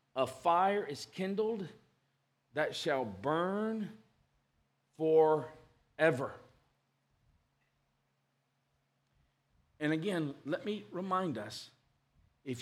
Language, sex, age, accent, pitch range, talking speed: English, male, 50-69, American, 120-170 Hz, 70 wpm